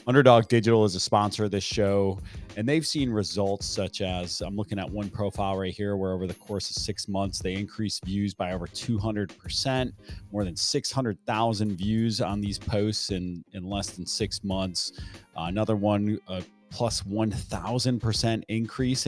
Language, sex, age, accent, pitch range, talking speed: English, male, 30-49, American, 90-110 Hz, 170 wpm